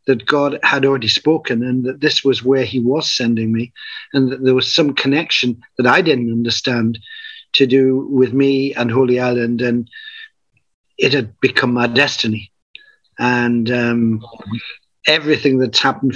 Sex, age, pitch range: male, 50-69, 130-155 Hz